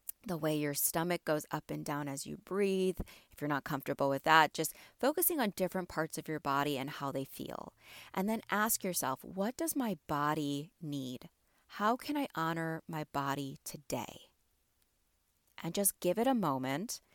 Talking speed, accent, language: 180 wpm, American, English